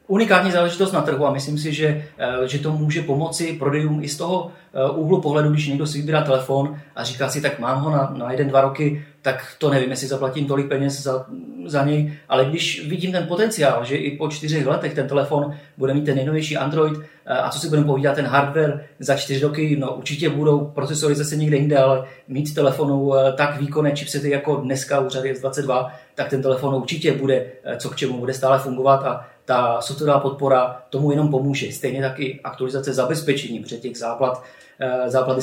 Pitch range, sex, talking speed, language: 135-150 Hz, male, 195 wpm, Czech